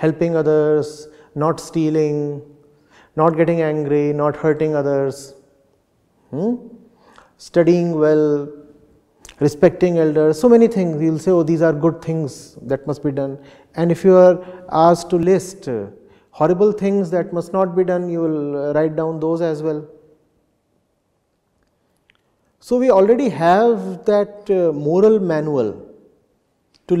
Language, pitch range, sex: English, 150-190 Hz, male